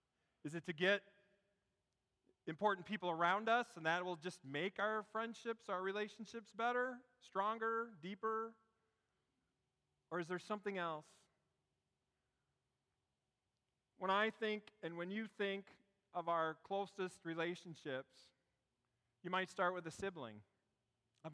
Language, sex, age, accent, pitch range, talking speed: English, male, 40-59, American, 135-190 Hz, 120 wpm